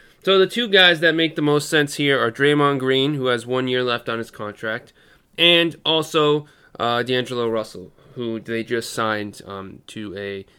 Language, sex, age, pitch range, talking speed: English, male, 30-49, 120-150 Hz, 185 wpm